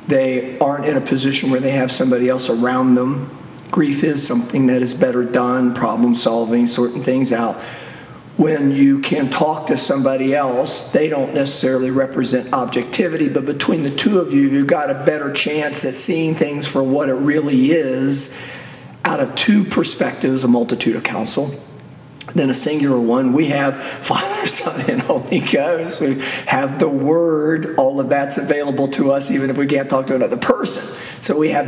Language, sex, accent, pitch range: English, male, American, 130-155 Hz